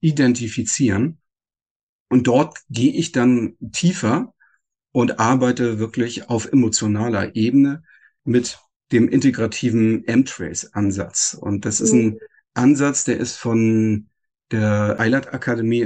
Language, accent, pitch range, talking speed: German, German, 110-135 Hz, 105 wpm